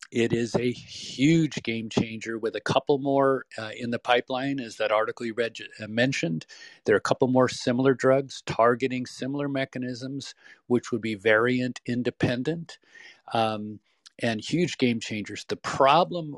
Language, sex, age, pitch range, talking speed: English, male, 40-59, 110-135 Hz, 155 wpm